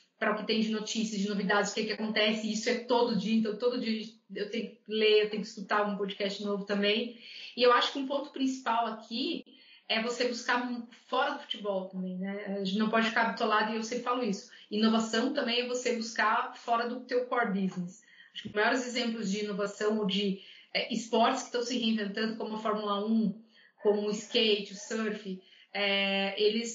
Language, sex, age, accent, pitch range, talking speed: Portuguese, female, 30-49, Brazilian, 205-240 Hz, 210 wpm